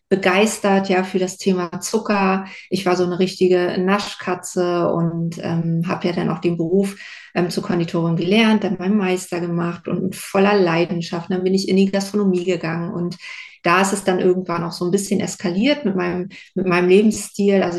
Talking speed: 185 wpm